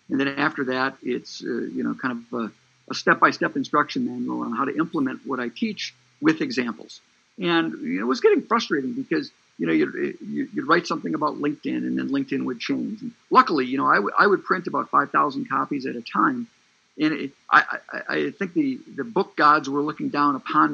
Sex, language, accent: male, English, American